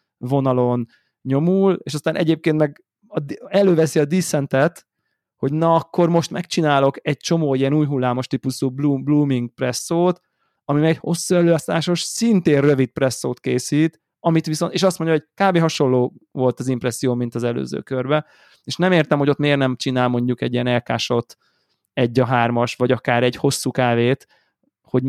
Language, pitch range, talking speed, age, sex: Hungarian, 130-160 Hz, 160 wpm, 20-39, male